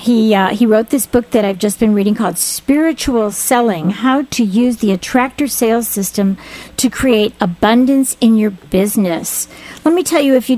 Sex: female